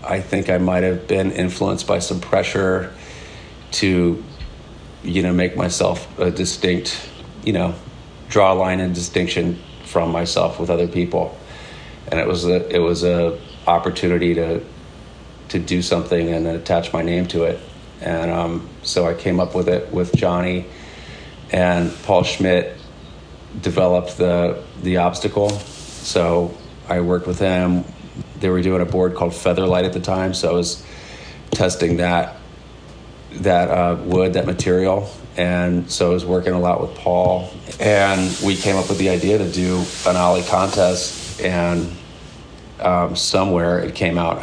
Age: 40-59